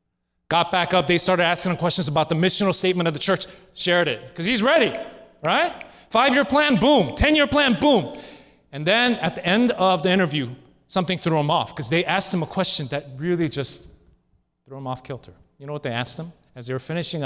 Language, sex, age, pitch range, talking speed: English, male, 30-49, 115-185 Hz, 215 wpm